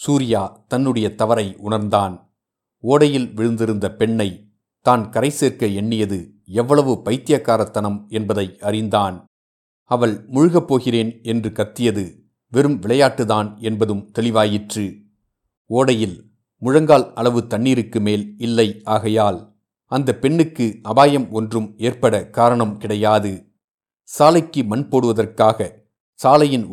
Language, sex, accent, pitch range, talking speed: Tamil, male, native, 105-125 Hz, 95 wpm